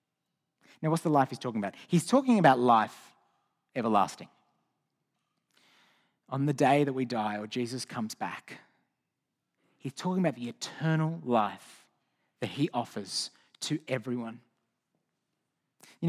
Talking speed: 125 wpm